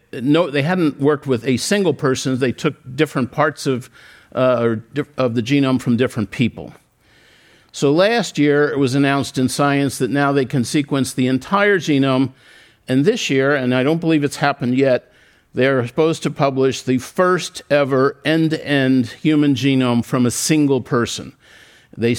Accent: American